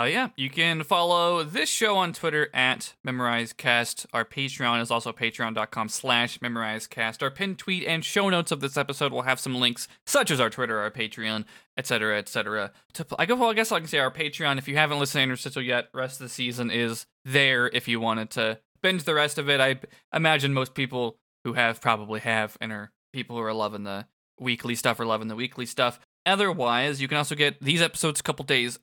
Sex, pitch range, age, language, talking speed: male, 115-150 Hz, 20-39, English, 220 wpm